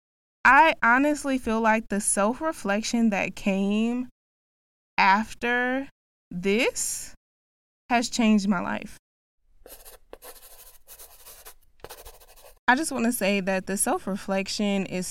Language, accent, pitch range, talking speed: English, American, 190-230 Hz, 100 wpm